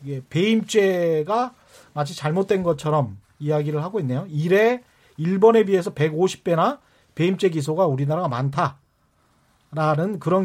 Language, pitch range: Korean, 150-215 Hz